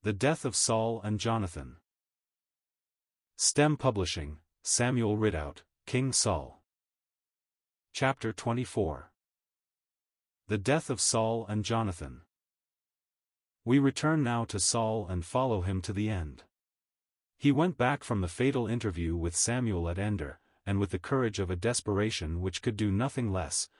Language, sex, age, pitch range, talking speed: English, male, 40-59, 95-120 Hz, 135 wpm